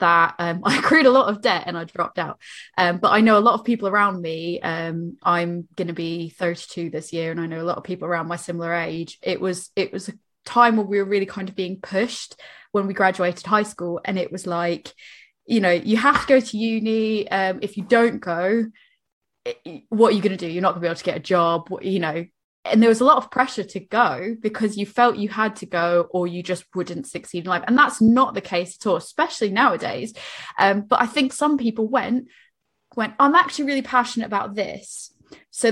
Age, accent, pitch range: 20-39, British, 180-230 Hz